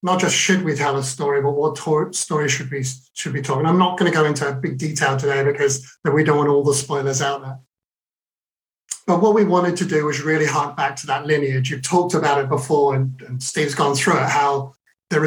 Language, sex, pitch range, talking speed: English, male, 140-160 Hz, 240 wpm